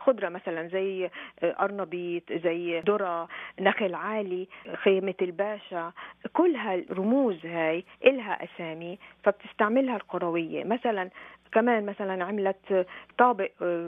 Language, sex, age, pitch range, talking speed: Arabic, female, 40-59, 175-215 Hz, 95 wpm